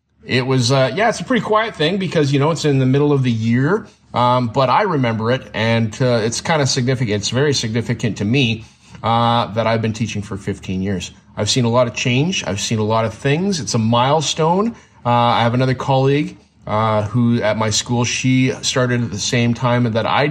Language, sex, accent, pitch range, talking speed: English, male, American, 120-155 Hz, 225 wpm